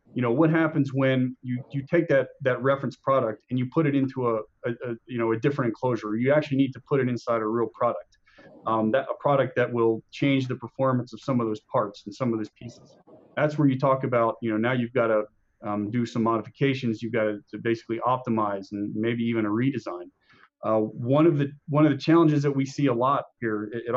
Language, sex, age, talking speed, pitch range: English, male, 30-49, 240 wpm, 115-140 Hz